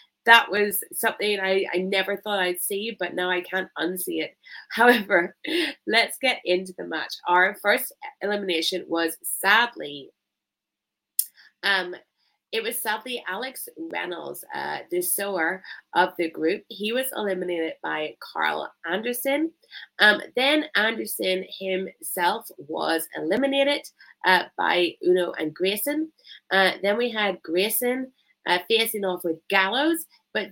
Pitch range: 180-230 Hz